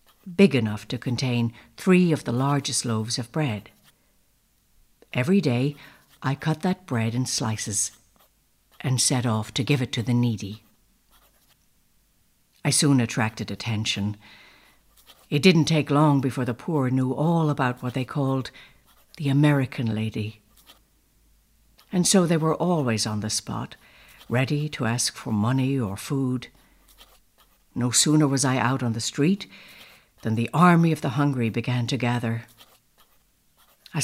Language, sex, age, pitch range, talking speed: English, female, 60-79, 120-155 Hz, 145 wpm